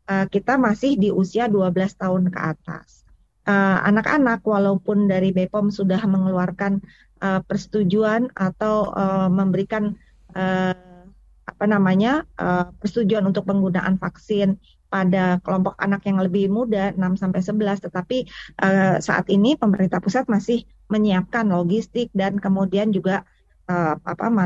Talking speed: 110 wpm